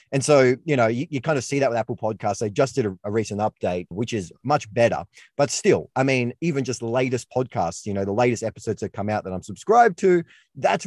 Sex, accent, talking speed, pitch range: male, Australian, 255 wpm, 105-135 Hz